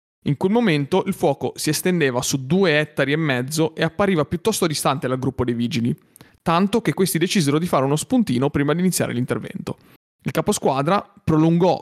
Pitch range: 135-180 Hz